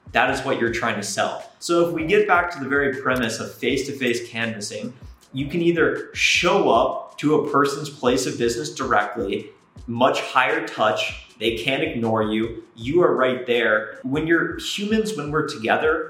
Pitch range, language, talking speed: 115-155 Hz, English, 180 wpm